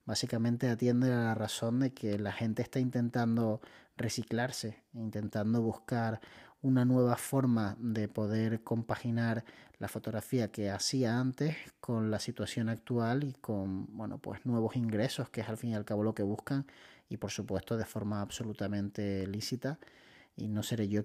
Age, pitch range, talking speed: 30-49, 105-120 Hz, 160 wpm